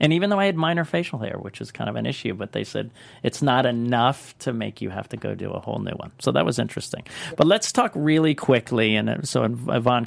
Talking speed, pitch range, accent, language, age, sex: 255 wpm, 120-145 Hz, American, English, 40-59, male